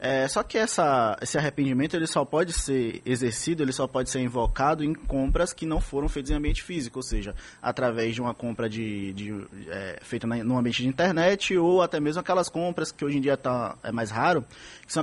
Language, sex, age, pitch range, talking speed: Portuguese, male, 20-39, 125-160 Hz, 215 wpm